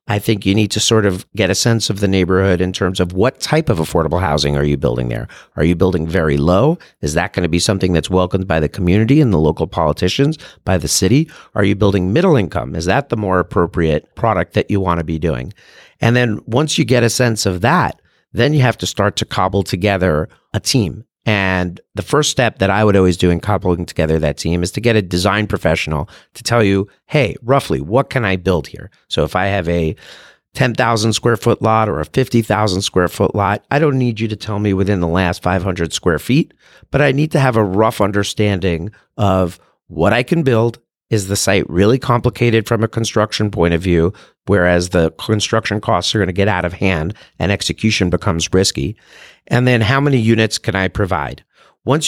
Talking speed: 220 wpm